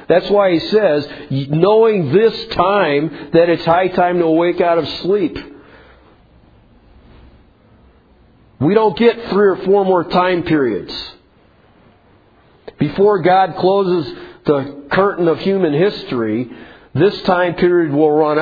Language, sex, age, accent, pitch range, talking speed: English, male, 50-69, American, 125-180 Hz, 125 wpm